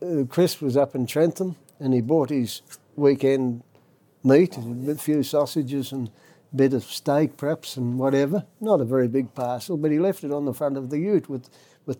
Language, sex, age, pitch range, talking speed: English, male, 60-79, 135-170 Hz, 200 wpm